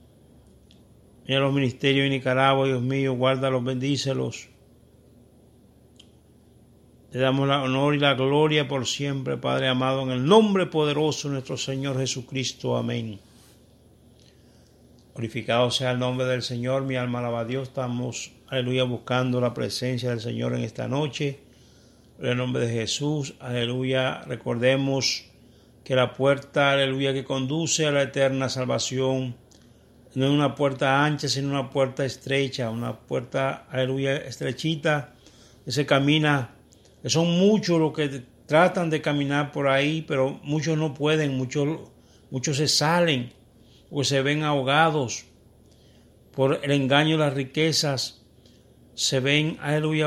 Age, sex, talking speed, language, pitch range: 60-79, male, 135 wpm, Spanish, 130-145 Hz